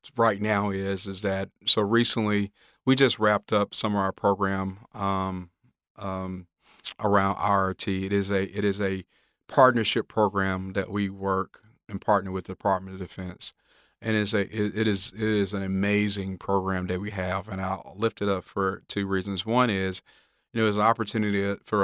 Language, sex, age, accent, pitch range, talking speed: English, male, 40-59, American, 95-105 Hz, 180 wpm